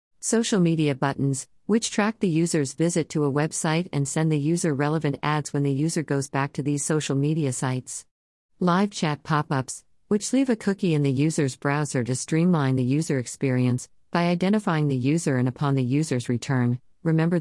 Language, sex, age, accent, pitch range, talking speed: English, female, 40-59, American, 130-165 Hz, 185 wpm